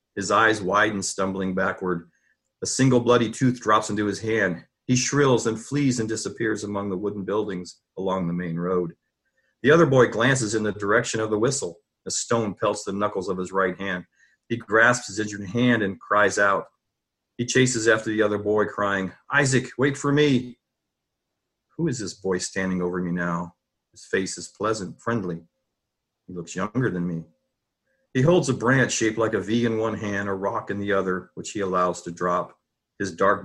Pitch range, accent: 90-115 Hz, American